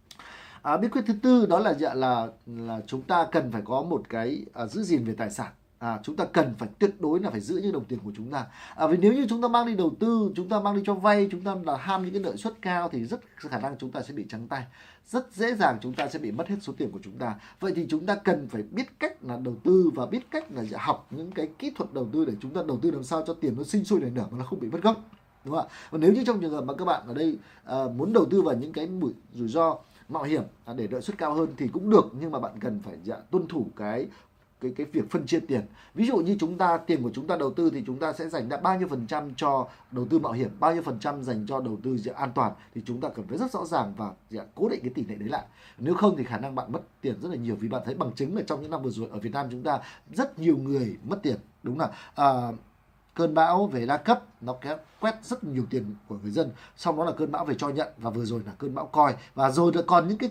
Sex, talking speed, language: male, 295 wpm, Vietnamese